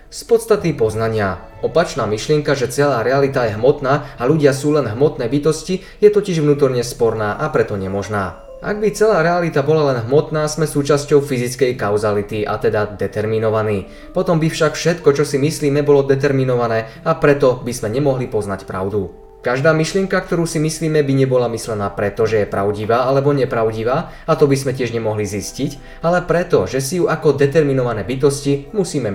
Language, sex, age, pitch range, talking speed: Slovak, male, 20-39, 115-155 Hz, 170 wpm